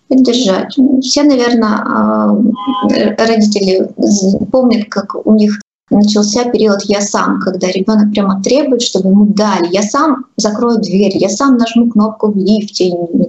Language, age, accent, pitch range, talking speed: Russian, 20-39, native, 205-245 Hz, 135 wpm